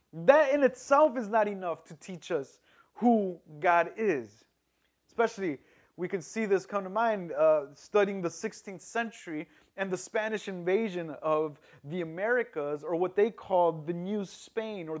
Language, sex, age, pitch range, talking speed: English, male, 30-49, 170-235 Hz, 160 wpm